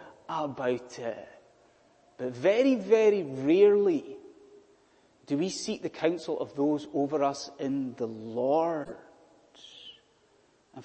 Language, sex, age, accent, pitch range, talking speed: English, male, 30-49, British, 165-275 Hz, 105 wpm